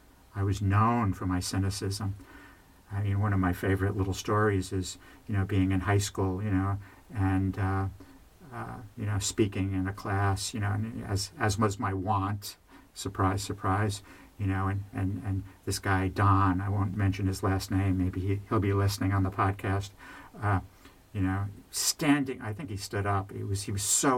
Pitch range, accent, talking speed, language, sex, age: 95-105 Hz, American, 195 wpm, English, male, 50-69